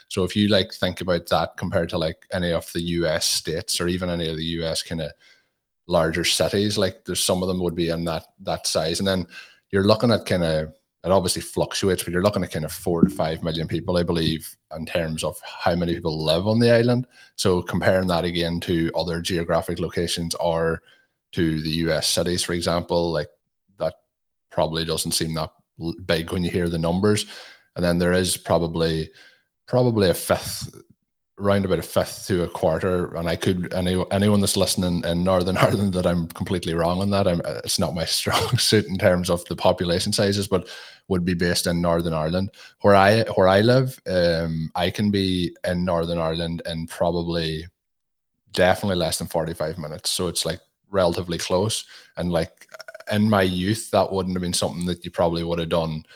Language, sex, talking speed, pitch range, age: English, male, 195 wpm, 85-95 Hz, 20-39